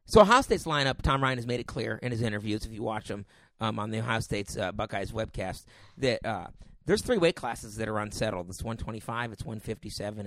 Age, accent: 40-59, American